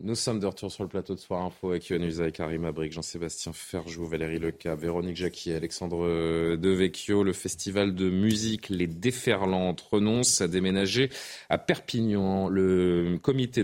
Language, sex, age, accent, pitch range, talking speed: French, male, 30-49, French, 95-120 Hz, 160 wpm